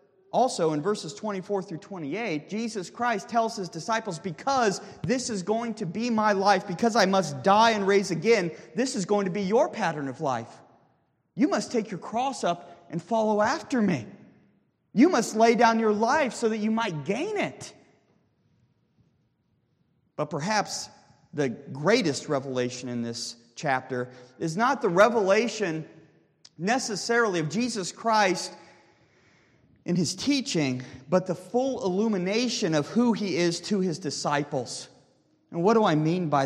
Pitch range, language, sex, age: 145-210 Hz, English, male, 30-49